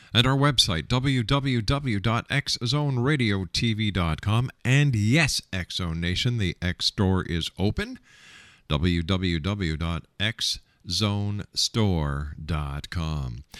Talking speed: 55 wpm